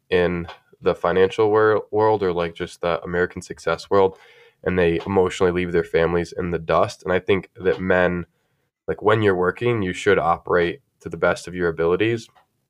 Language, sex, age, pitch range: English, male, 10-29, 90-105 Hz